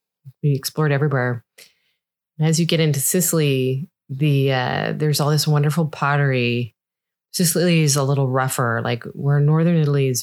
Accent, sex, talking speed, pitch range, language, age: American, female, 145 wpm, 125-155 Hz, English, 30-49